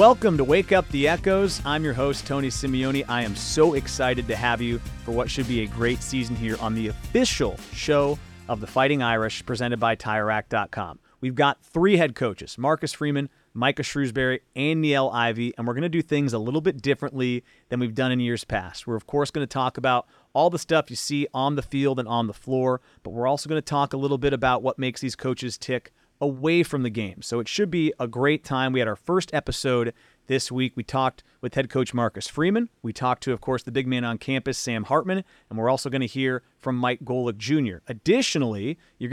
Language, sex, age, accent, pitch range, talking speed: English, male, 30-49, American, 120-145 Hz, 225 wpm